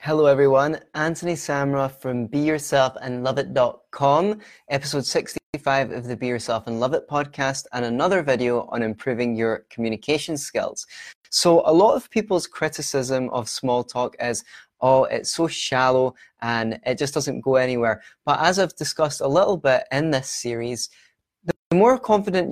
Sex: male